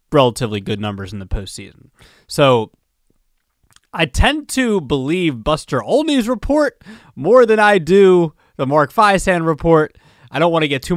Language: English